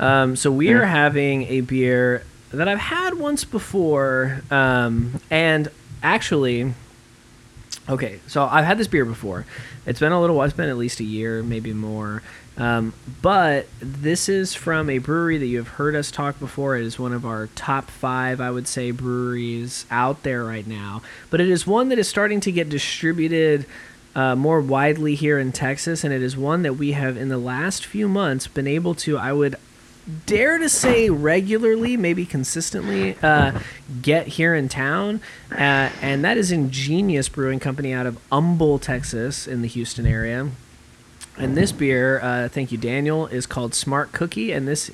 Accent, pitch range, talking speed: American, 125-155 Hz, 180 wpm